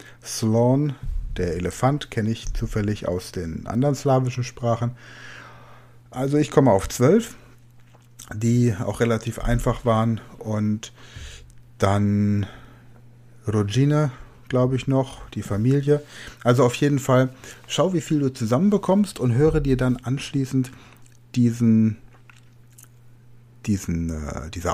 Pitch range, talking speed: 110-130 Hz, 110 wpm